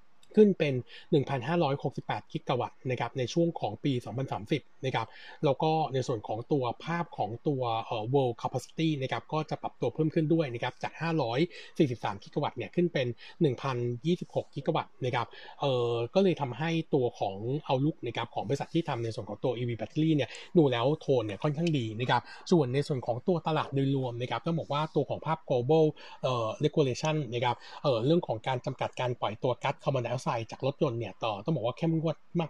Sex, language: male, Thai